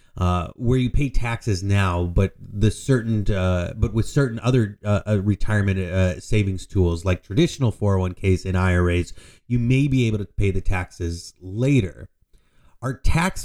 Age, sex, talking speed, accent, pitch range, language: 30-49, male, 180 wpm, American, 95-115 Hz, English